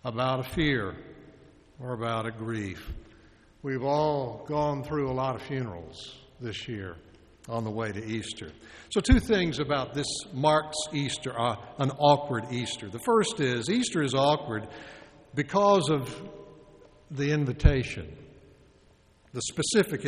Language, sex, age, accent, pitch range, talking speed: English, male, 60-79, American, 125-180 Hz, 135 wpm